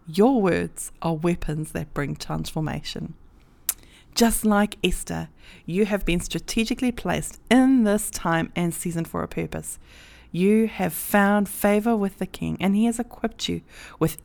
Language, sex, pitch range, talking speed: English, female, 155-205 Hz, 150 wpm